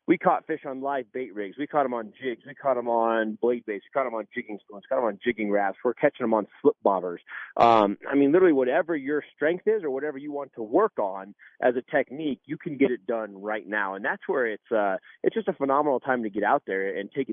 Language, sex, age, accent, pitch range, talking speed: English, male, 30-49, American, 115-160 Hz, 265 wpm